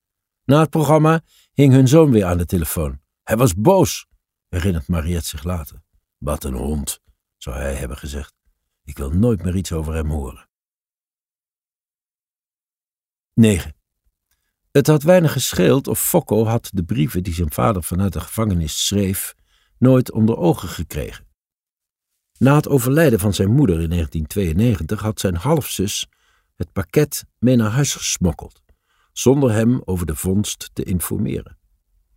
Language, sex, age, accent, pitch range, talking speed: Dutch, male, 60-79, Dutch, 80-120 Hz, 145 wpm